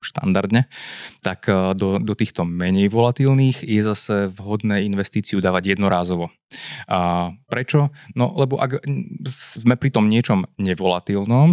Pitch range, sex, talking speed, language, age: 100-130 Hz, male, 120 wpm, Slovak, 20-39